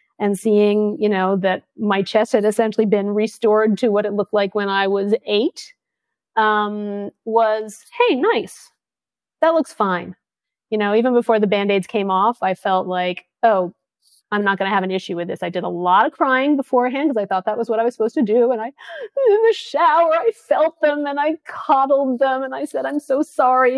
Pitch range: 200-290 Hz